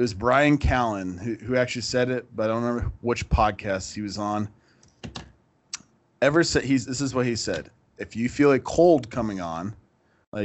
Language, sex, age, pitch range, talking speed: English, male, 20-39, 100-125 Hz, 195 wpm